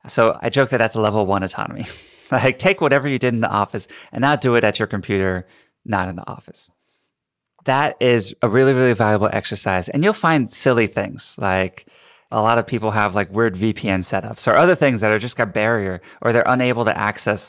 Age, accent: 30-49, American